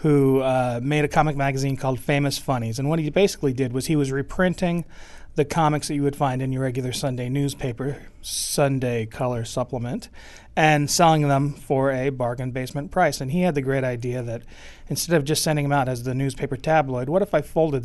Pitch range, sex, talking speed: 130-160 Hz, male, 205 wpm